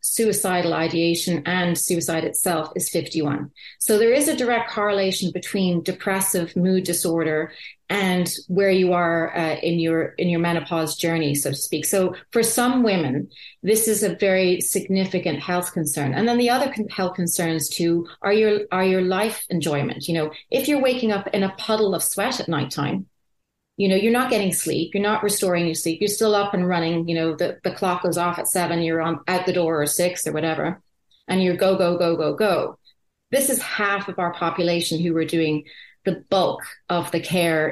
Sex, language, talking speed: female, English, 195 wpm